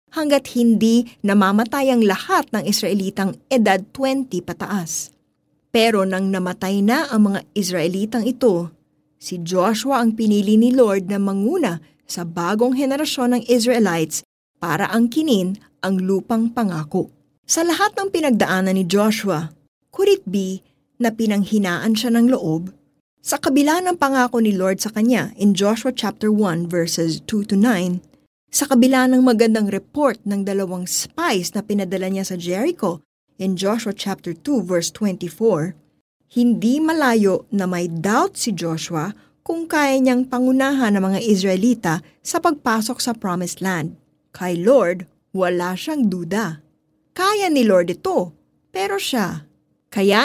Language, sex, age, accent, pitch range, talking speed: Filipino, female, 20-39, native, 185-245 Hz, 135 wpm